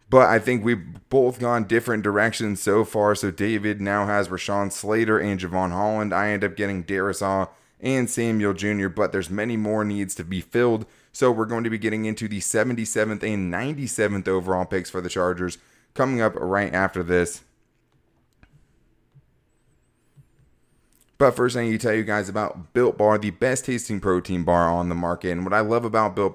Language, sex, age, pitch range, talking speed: English, male, 20-39, 95-110 Hz, 185 wpm